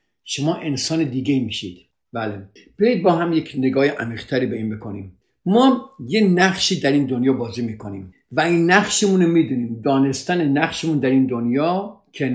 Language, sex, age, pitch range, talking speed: Persian, male, 50-69, 125-175 Hz, 160 wpm